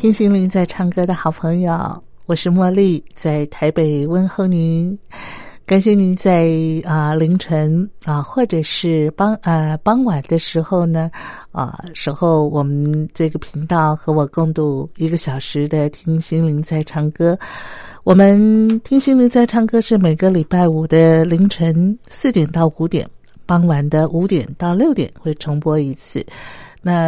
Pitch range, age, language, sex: 150-180 Hz, 50-69, Chinese, female